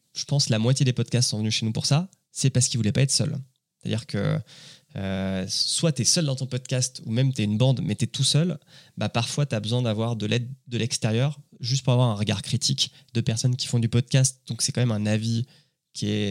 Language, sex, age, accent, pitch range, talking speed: French, male, 20-39, French, 110-145 Hz, 260 wpm